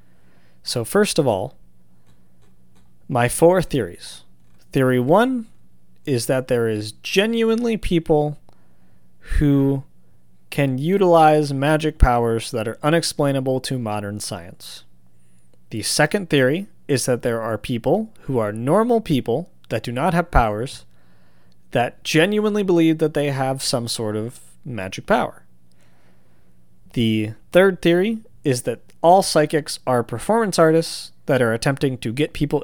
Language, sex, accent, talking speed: English, male, American, 130 wpm